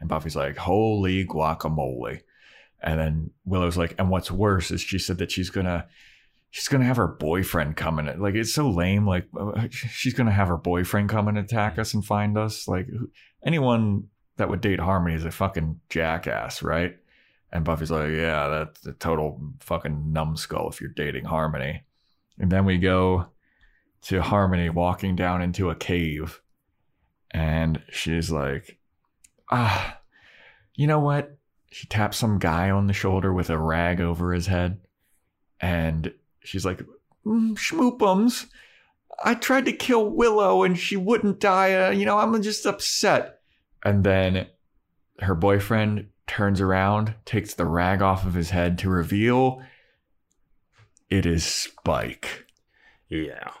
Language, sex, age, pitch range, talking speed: English, male, 30-49, 85-110 Hz, 155 wpm